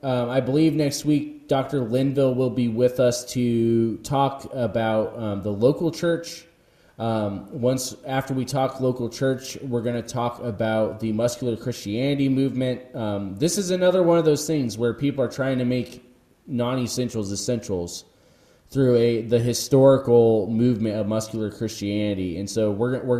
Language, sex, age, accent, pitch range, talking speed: English, male, 20-39, American, 110-135 Hz, 160 wpm